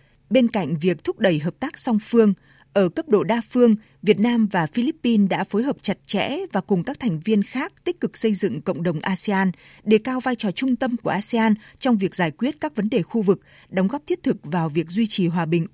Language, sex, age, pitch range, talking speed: Vietnamese, female, 20-39, 180-235 Hz, 240 wpm